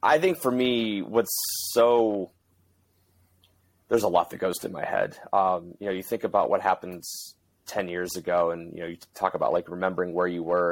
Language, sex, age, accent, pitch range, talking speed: English, male, 30-49, American, 85-100 Hz, 205 wpm